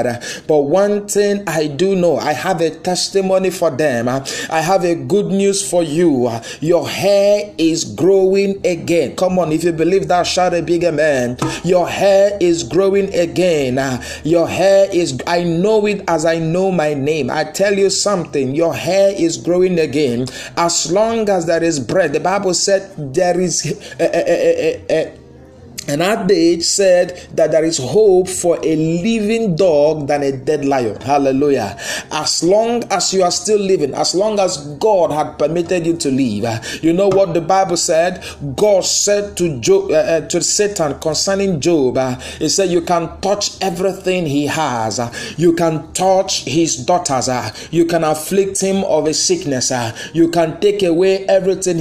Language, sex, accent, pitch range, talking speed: English, male, Nigerian, 155-195 Hz, 165 wpm